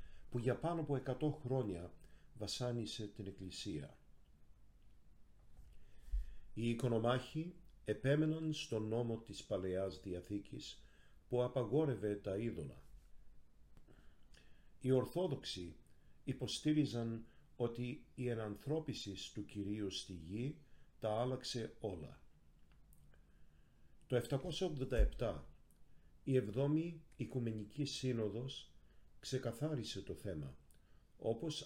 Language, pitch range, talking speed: Greek, 95-135 Hz, 85 wpm